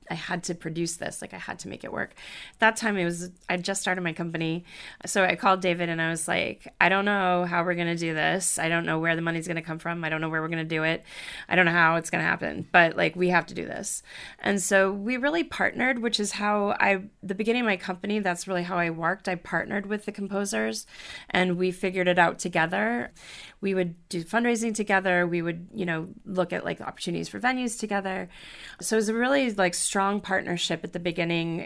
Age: 20-39